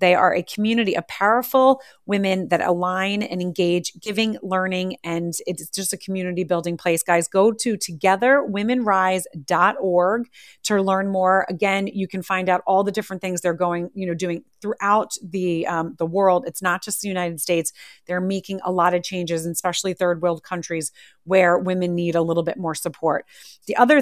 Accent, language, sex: American, English, female